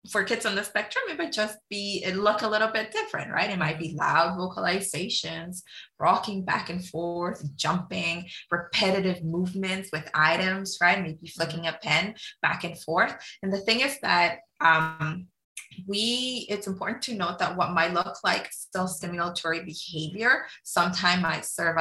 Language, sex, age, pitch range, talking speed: English, female, 20-39, 165-195 Hz, 165 wpm